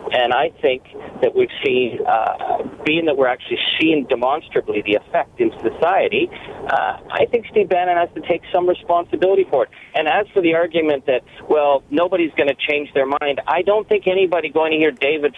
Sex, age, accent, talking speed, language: male, 50-69, American, 195 wpm, English